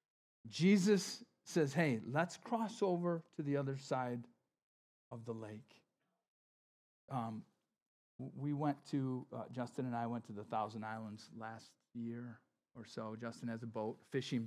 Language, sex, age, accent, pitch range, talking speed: English, male, 40-59, American, 120-155 Hz, 145 wpm